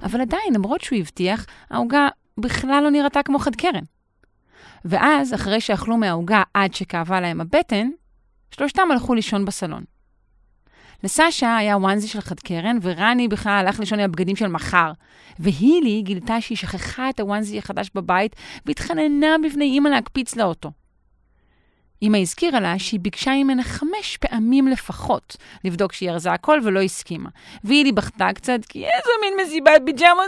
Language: Hebrew